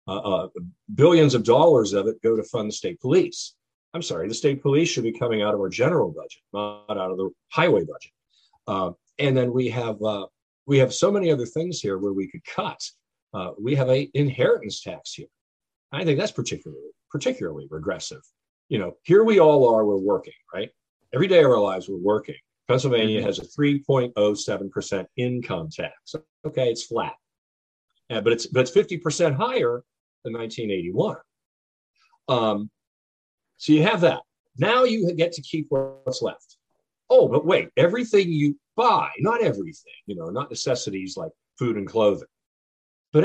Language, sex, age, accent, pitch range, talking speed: English, male, 50-69, American, 110-170 Hz, 175 wpm